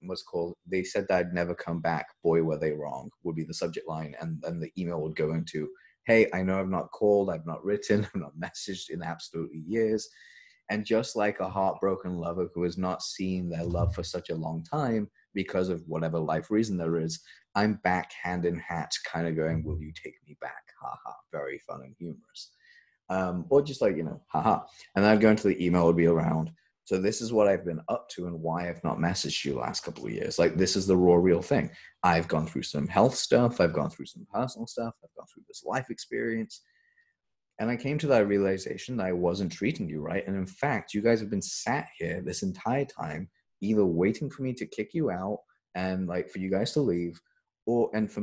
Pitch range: 85-110 Hz